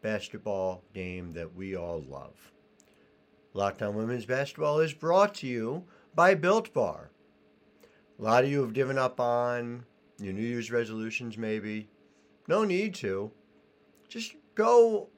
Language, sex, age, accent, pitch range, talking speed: English, male, 60-79, American, 105-155 Hz, 135 wpm